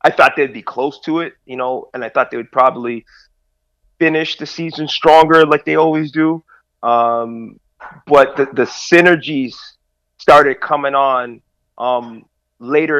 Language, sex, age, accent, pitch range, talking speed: English, male, 30-49, American, 125-150 Hz, 150 wpm